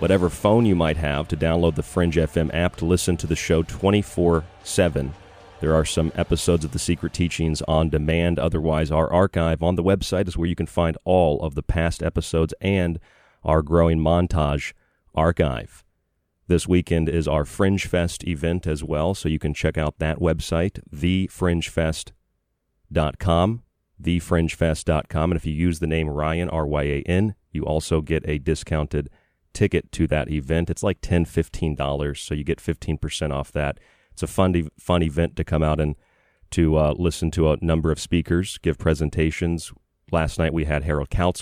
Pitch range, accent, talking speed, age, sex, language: 75-85 Hz, American, 170 wpm, 40-59, male, English